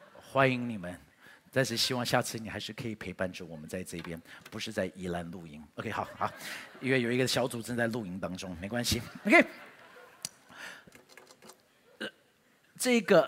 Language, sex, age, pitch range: Chinese, male, 50-69, 110-165 Hz